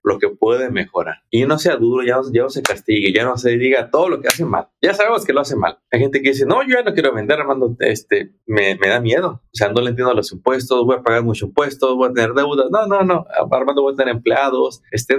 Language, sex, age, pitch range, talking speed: Spanish, male, 30-49, 115-165 Hz, 275 wpm